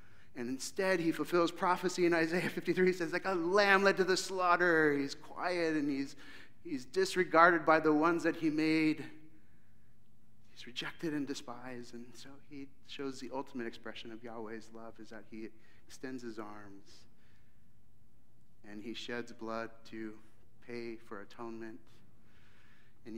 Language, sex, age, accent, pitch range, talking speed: English, male, 40-59, American, 115-140 Hz, 150 wpm